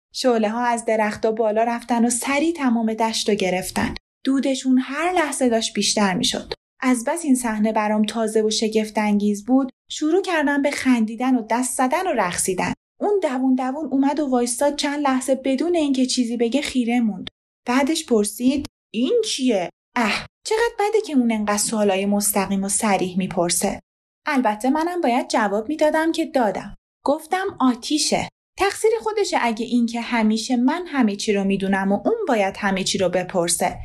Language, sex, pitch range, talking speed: Persian, female, 215-280 Hz, 165 wpm